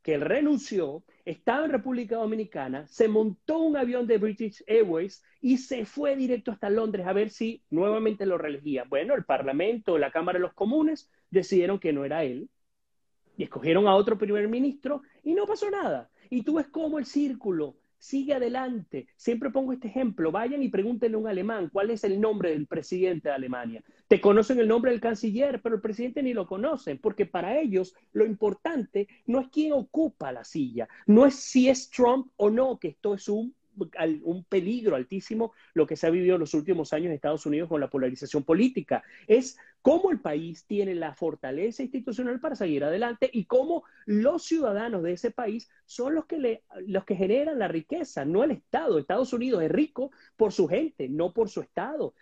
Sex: male